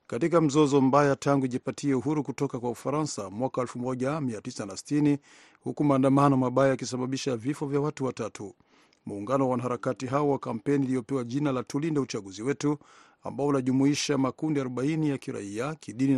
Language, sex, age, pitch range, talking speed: Swahili, male, 50-69, 125-145 Hz, 135 wpm